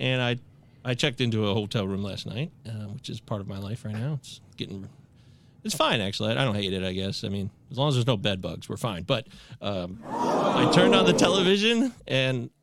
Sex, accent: male, American